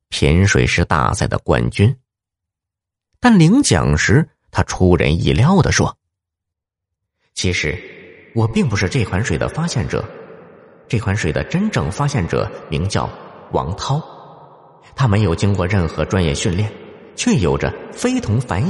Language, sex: Chinese, male